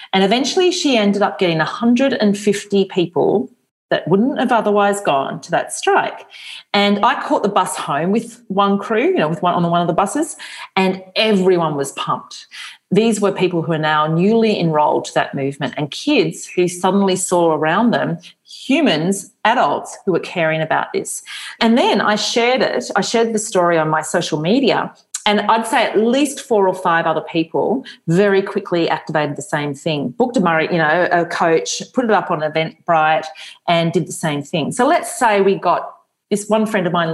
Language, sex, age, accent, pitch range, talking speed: English, female, 40-59, Australian, 165-225 Hz, 190 wpm